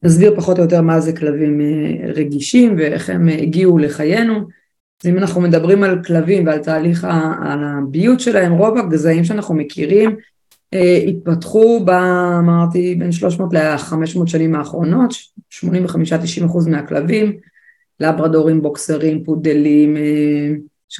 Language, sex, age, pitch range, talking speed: Hebrew, female, 20-39, 160-195 Hz, 125 wpm